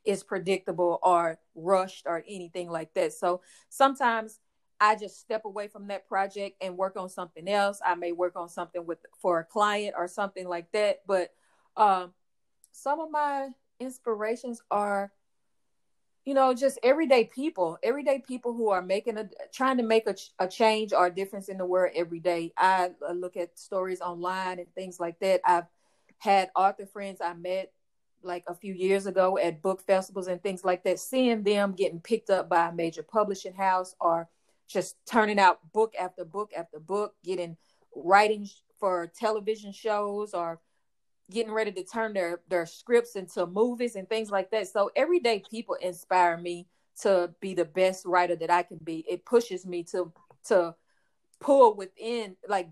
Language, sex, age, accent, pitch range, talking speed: English, female, 30-49, American, 175-215 Hz, 175 wpm